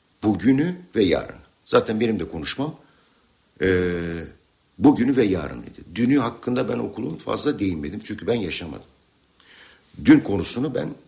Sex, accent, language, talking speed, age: male, Turkish, English, 125 wpm, 60-79